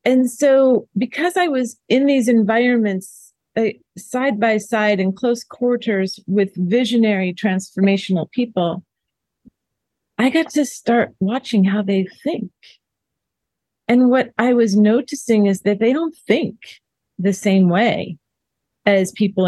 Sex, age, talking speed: female, 40-59, 130 wpm